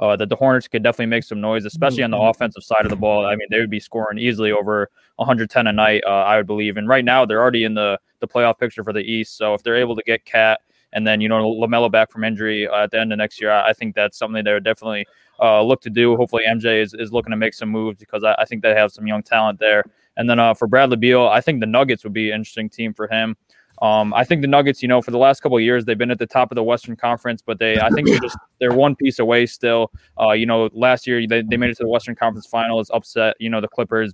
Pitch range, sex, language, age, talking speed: 110-120 Hz, male, English, 20-39, 295 wpm